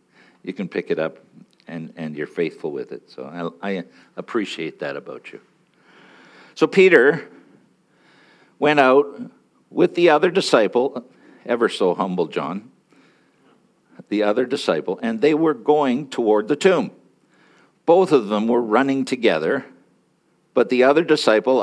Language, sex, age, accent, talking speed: English, male, 60-79, American, 140 wpm